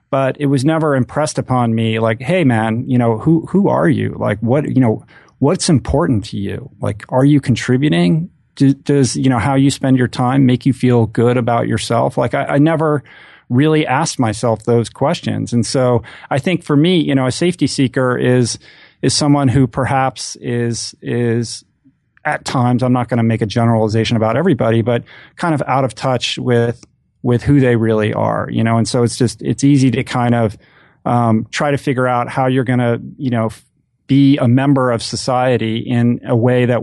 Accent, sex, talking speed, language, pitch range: American, male, 205 wpm, English, 115-140 Hz